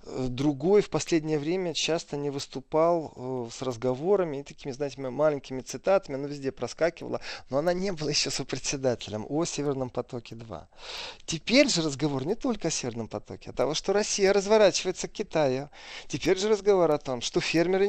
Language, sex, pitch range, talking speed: Russian, male, 125-165 Hz, 160 wpm